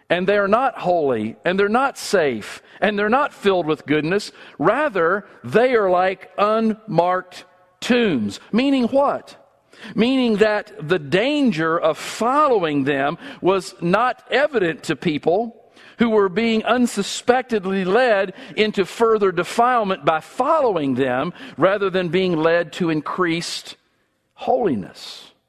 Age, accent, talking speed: 50-69, American, 125 wpm